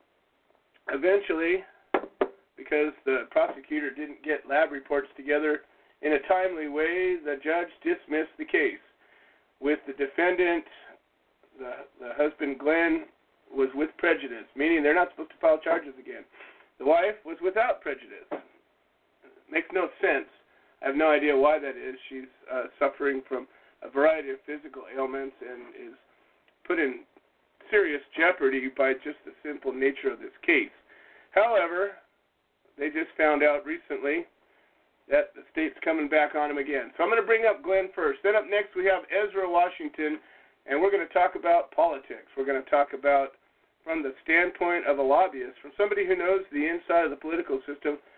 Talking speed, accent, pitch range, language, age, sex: 165 wpm, American, 145-200 Hz, English, 40-59, male